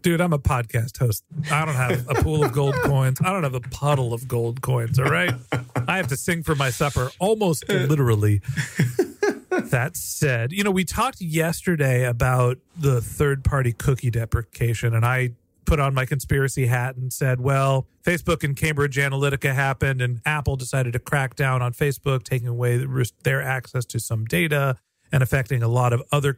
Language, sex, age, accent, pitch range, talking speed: English, male, 40-59, American, 125-150 Hz, 180 wpm